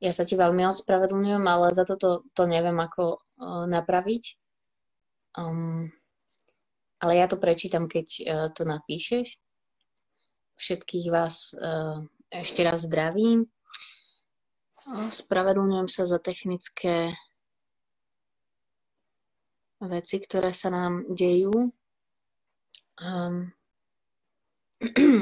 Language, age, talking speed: Slovak, 20-39, 85 wpm